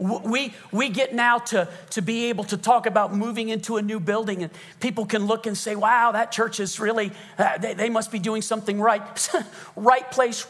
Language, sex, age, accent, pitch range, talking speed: English, male, 40-59, American, 185-225 Hz, 210 wpm